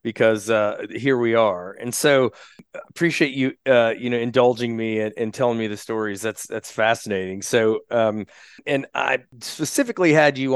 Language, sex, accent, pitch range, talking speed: English, male, American, 115-135 Hz, 170 wpm